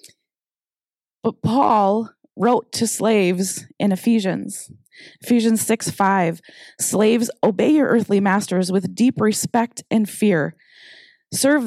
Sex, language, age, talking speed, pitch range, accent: female, English, 20-39, 110 wpm, 185-230 Hz, American